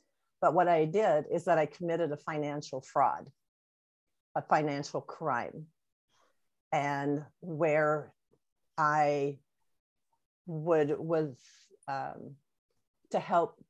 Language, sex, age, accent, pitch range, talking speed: English, female, 50-69, American, 155-200 Hz, 95 wpm